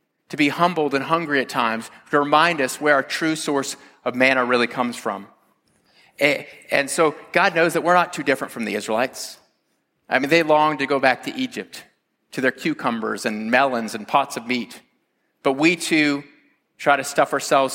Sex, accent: male, American